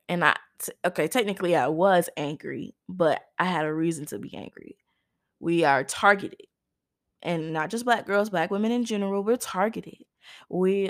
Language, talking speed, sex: English, 170 wpm, female